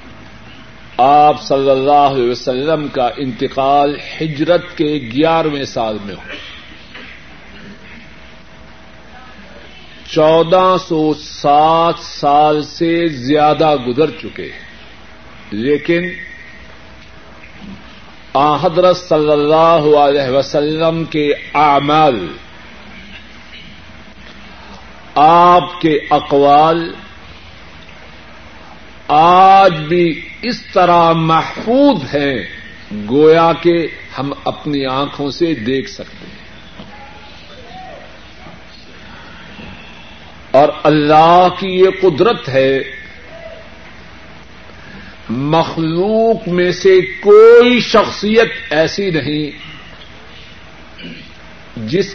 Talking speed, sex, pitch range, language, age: 70 wpm, male, 130-170 Hz, Urdu, 50-69